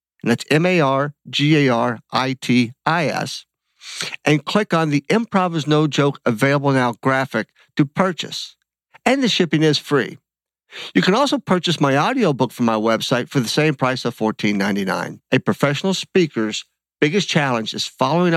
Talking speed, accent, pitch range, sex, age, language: 140 wpm, American, 120-160 Hz, male, 50-69, English